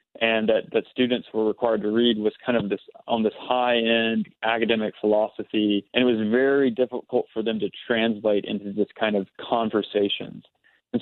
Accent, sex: American, male